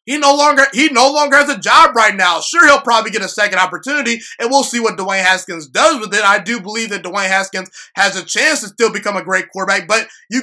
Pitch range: 200-260 Hz